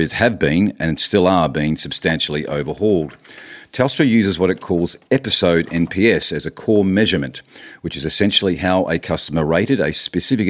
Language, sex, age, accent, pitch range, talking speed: English, male, 50-69, Australian, 80-95 Hz, 160 wpm